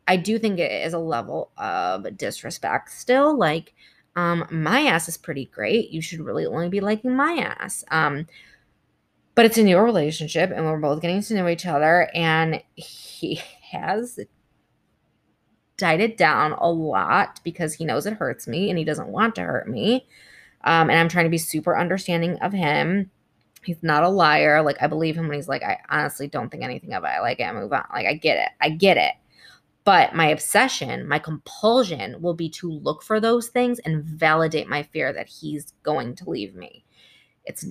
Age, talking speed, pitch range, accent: 20-39, 195 wpm, 160-195 Hz, American